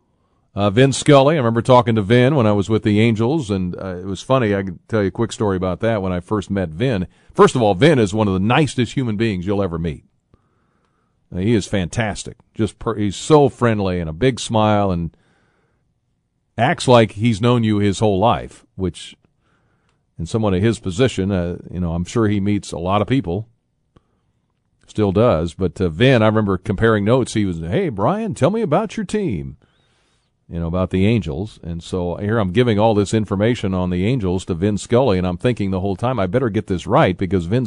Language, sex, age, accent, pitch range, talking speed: English, male, 40-59, American, 95-120 Hz, 215 wpm